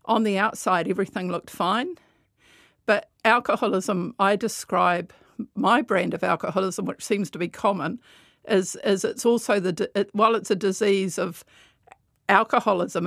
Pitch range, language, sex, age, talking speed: 190-225 Hz, English, female, 50-69, 140 wpm